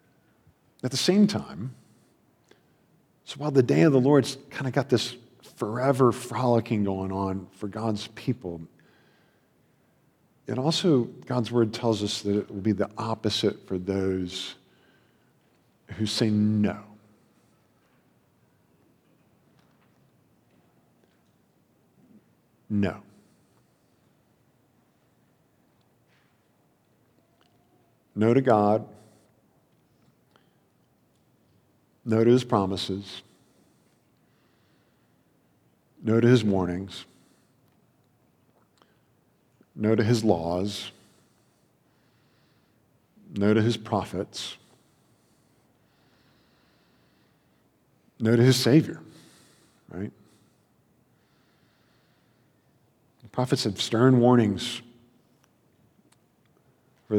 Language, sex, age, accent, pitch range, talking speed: English, male, 50-69, American, 100-120 Hz, 70 wpm